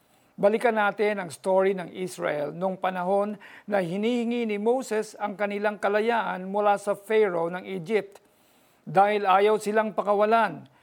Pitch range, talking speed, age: 185-215 Hz, 135 wpm, 50-69